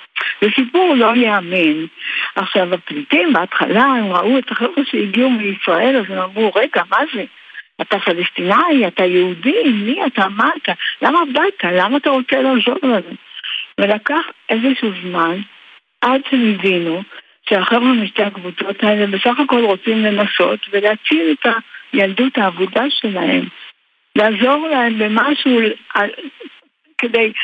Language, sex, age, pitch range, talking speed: Hebrew, female, 60-79, 190-255 Hz, 130 wpm